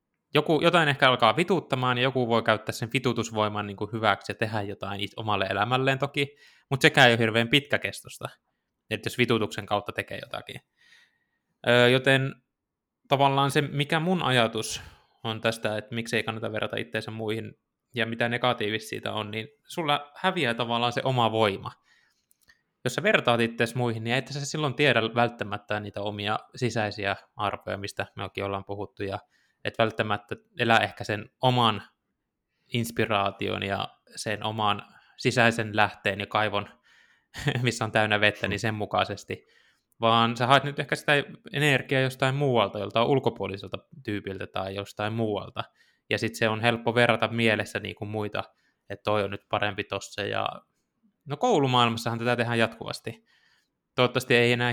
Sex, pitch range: male, 105-130 Hz